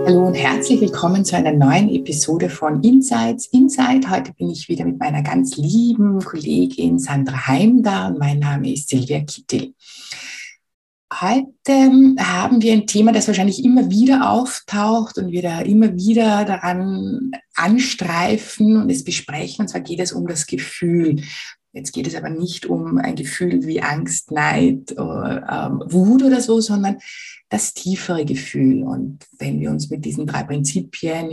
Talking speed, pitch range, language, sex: 160 wpm, 155-225 Hz, German, female